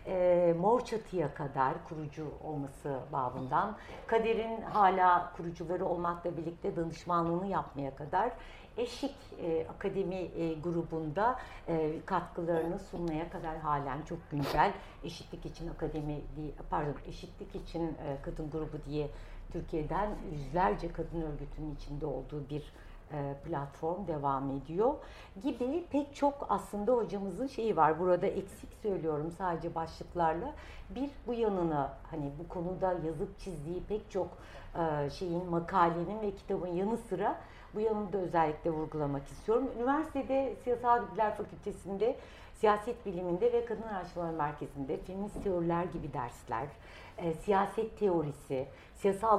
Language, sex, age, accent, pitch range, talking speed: Turkish, female, 60-79, native, 155-200 Hz, 120 wpm